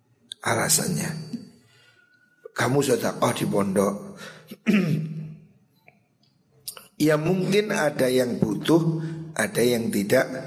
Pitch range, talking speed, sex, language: 135-175 Hz, 75 wpm, male, Indonesian